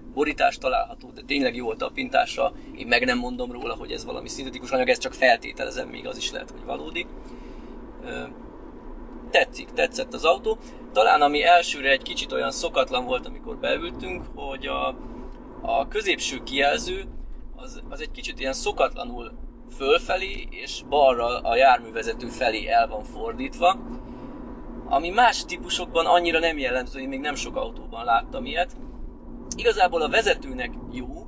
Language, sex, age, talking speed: Hungarian, male, 20-39, 150 wpm